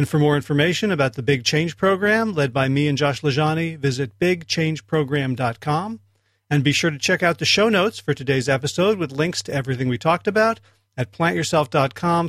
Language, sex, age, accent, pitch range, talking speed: English, male, 40-59, American, 135-165 Hz, 185 wpm